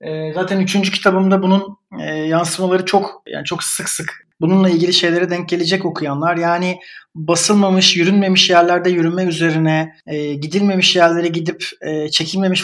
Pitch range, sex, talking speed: 155-185 Hz, male, 125 wpm